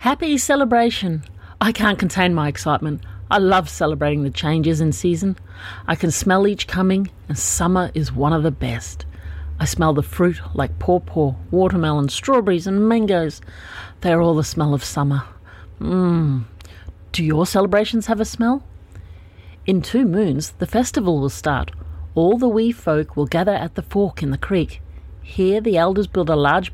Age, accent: 40-59, Australian